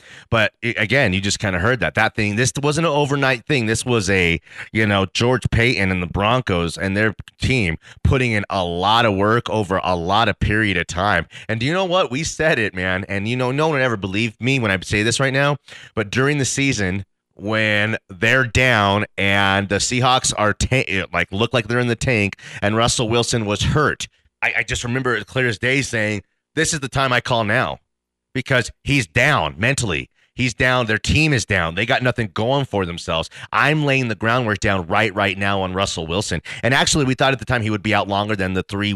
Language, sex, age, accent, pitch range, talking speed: English, male, 30-49, American, 100-130 Hz, 225 wpm